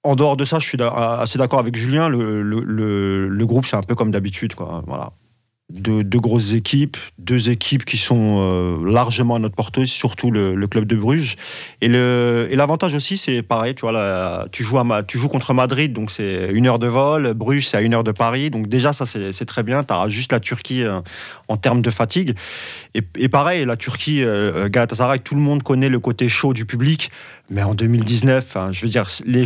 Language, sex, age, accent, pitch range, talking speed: French, male, 30-49, French, 115-140 Hz, 225 wpm